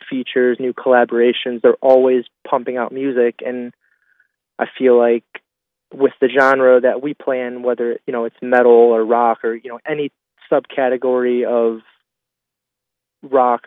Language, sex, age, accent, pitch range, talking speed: English, male, 20-39, American, 120-130 Hz, 145 wpm